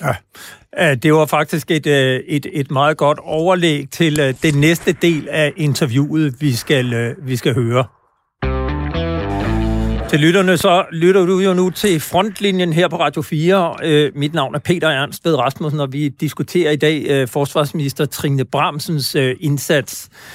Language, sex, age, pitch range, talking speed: Danish, male, 60-79, 135-175 Hz, 145 wpm